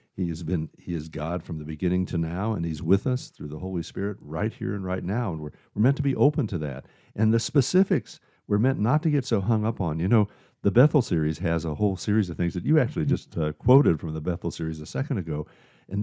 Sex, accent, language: male, American, English